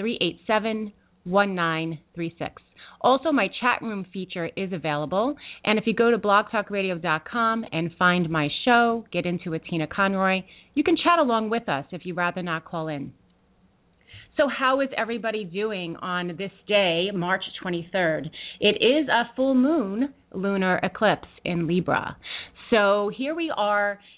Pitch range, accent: 175-225 Hz, American